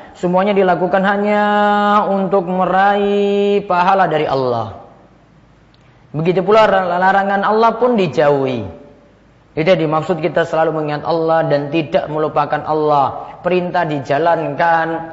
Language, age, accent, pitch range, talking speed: Indonesian, 30-49, native, 160-205 Hz, 105 wpm